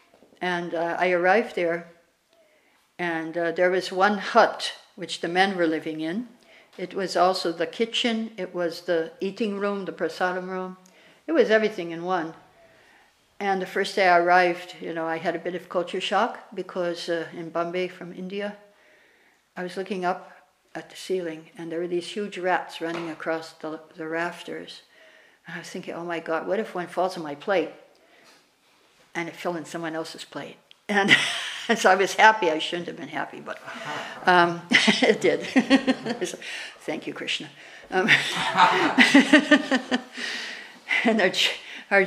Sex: female